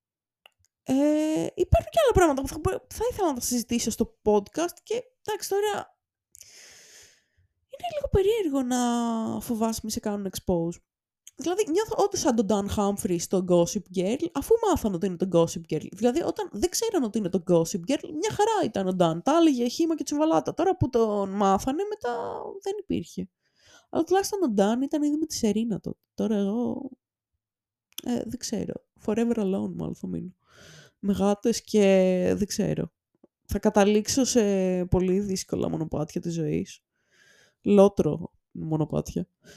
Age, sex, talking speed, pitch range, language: 20-39, female, 155 wpm, 185-290 Hz, Greek